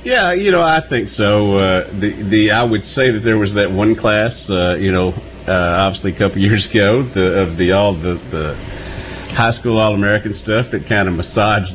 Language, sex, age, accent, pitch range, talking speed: English, male, 50-69, American, 90-105 Hz, 210 wpm